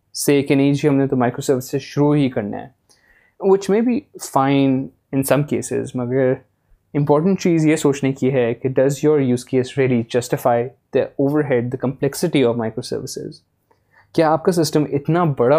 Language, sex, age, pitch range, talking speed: Urdu, male, 20-39, 125-150 Hz, 185 wpm